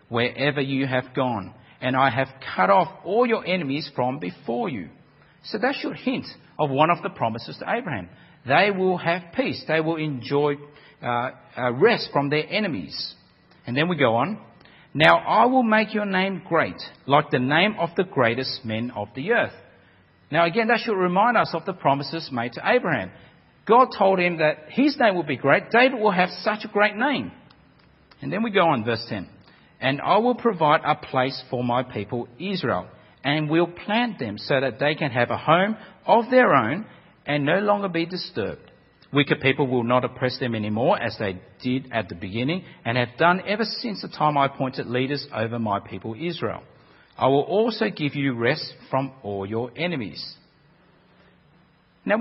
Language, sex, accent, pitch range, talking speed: English, male, Australian, 125-190 Hz, 185 wpm